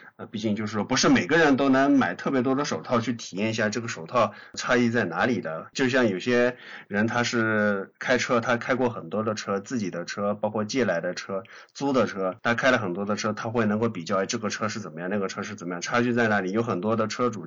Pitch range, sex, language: 105-120 Hz, male, Chinese